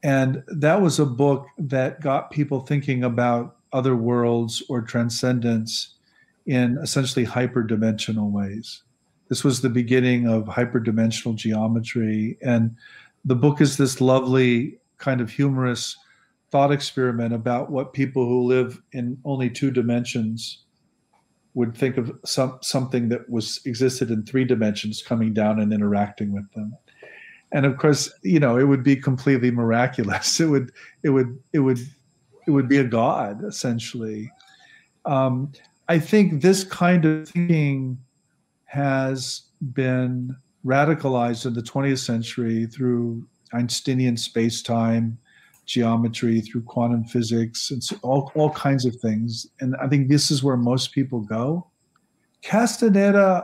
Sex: male